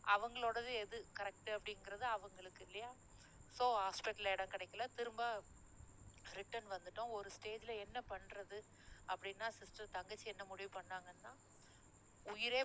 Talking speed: 115 wpm